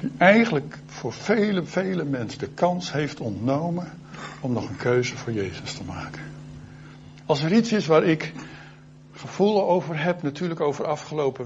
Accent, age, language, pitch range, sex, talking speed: Dutch, 60-79, Dutch, 125-150 Hz, male, 155 wpm